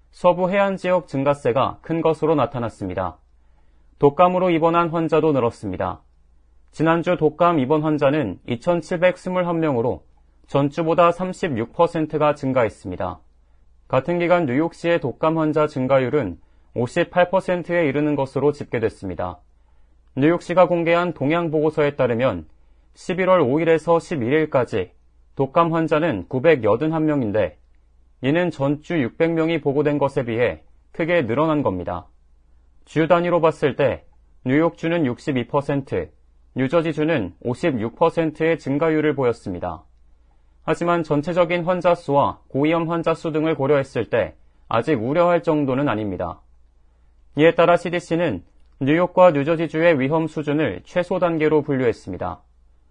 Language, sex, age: Korean, male, 30-49